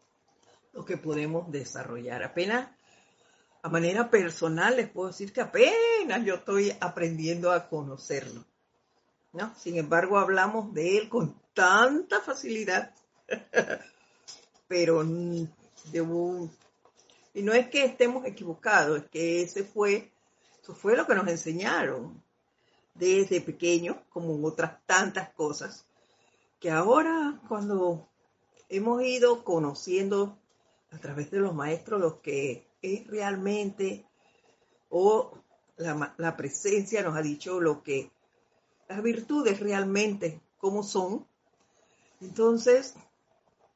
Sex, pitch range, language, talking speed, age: female, 165-210 Hz, Spanish, 115 wpm, 50-69